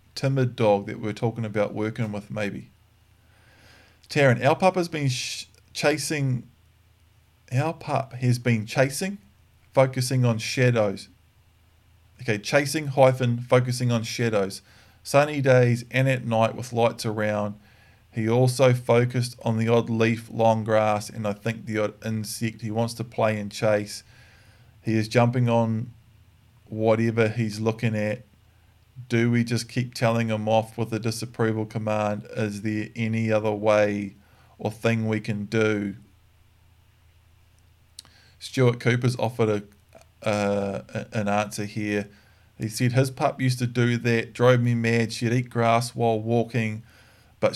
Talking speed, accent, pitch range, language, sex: 140 wpm, Australian, 105-120 Hz, English, male